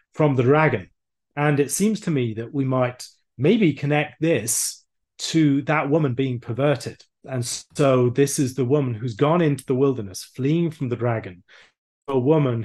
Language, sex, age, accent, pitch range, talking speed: English, male, 30-49, British, 115-150 Hz, 170 wpm